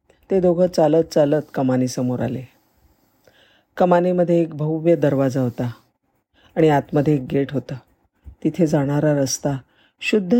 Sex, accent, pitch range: female, native, 130-180 Hz